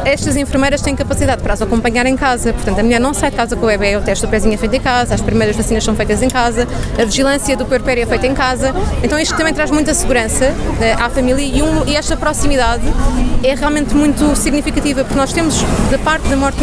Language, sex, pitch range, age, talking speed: Portuguese, female, 230-270 Hz, 20-39, 235 wpm